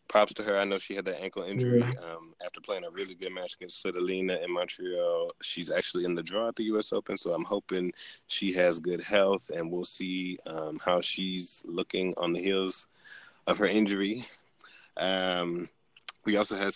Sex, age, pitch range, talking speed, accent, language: male, 20-39, 90-110 Hz, 195 wpm, American, English